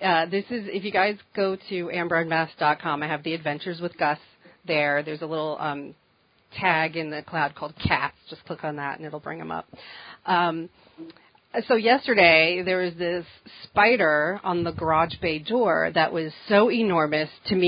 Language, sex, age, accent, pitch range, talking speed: English, female, 40-59, American, 160-200 Hz, 180 wpm